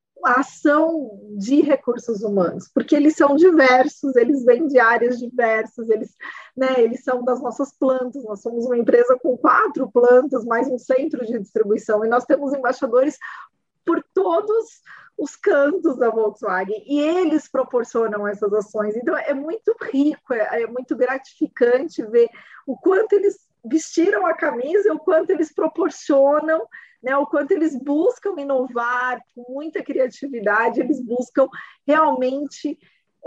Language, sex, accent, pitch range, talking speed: Portuguese, female, Brazilian, 240-315 Hz, 140 wpm